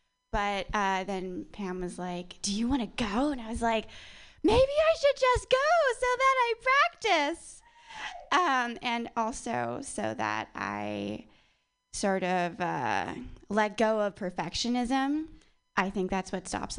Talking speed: 150 wpm